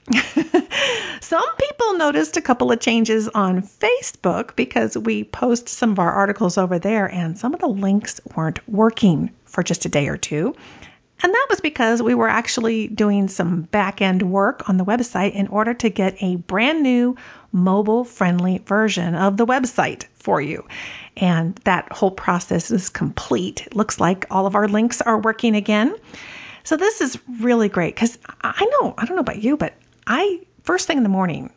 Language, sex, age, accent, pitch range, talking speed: English, female, 50-69, American, 190-255 Hz, 185 wpm